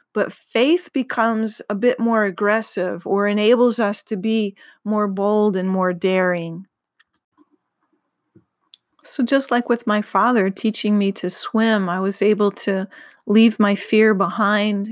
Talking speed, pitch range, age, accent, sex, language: 140 wpm, 195-235 Hz, 30-49, American, female, English